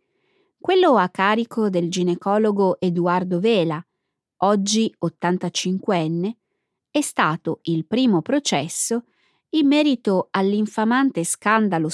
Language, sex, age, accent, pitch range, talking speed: Italian, female, 20-39, native, 175-240 Hz, 90 wpm